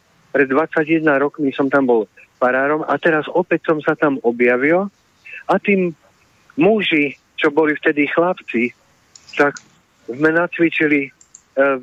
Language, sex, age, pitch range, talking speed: Slovak, male, 50-69, 130-165 Hz, 125 wpm